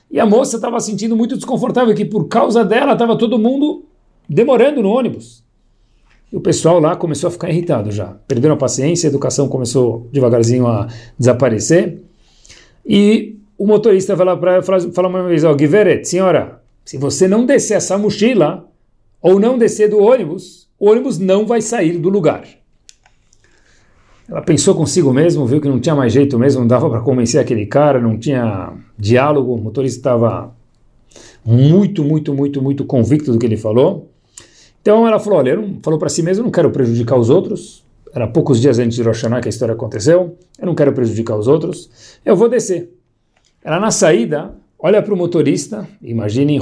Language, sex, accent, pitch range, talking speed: Portuguese, male, Brazilian, 125-190 Hz, 180 wpm